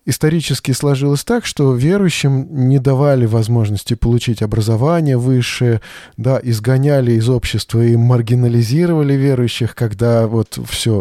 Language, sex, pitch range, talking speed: Russian, male, 115-140 Hz, 115 wpm